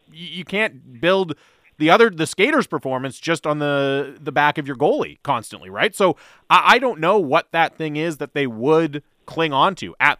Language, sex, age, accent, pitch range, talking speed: English, male, 30-49, American, 120-160 Hz, 195 wpm